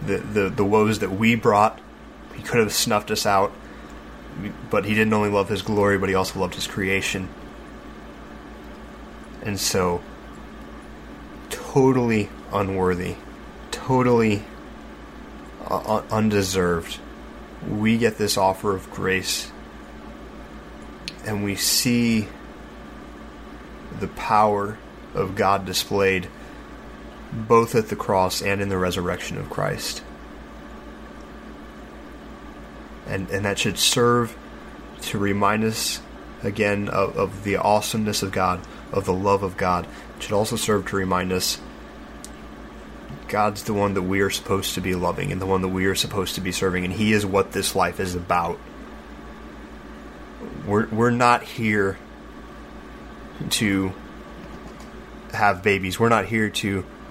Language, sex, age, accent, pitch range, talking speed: English, male, 20-39, American, 90-105 Hz, 130 wpm